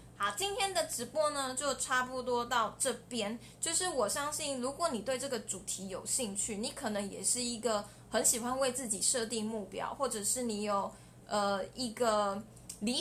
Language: Chinese